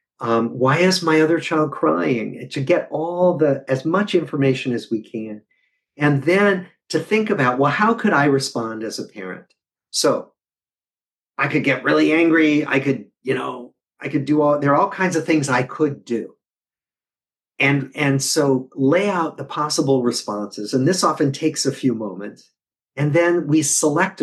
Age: 50-69